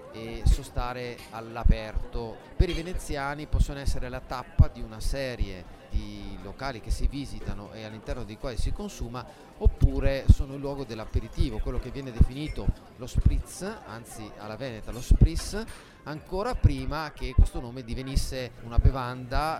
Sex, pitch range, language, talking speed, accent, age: male, 105-130 Hz, Italian, 145 wpm, native, 30-49